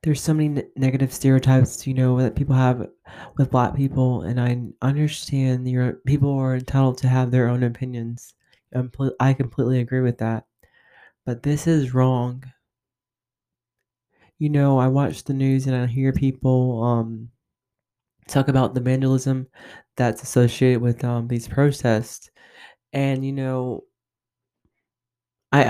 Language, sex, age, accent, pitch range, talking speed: English, male, 20-39, American, 120-140 Hz, 140 wpm